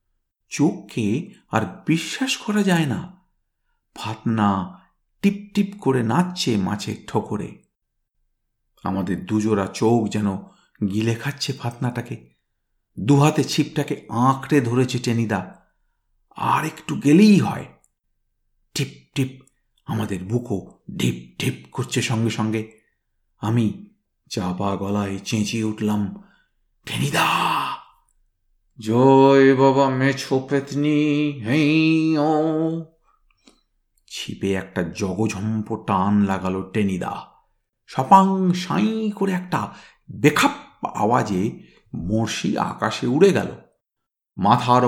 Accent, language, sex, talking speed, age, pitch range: native, Bengali, male, 80 wpm, 50-69, 105-150 Hz